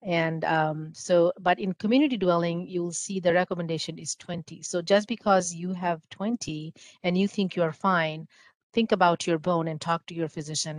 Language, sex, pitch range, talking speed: English, female, 170-225 Hz, 190 wpm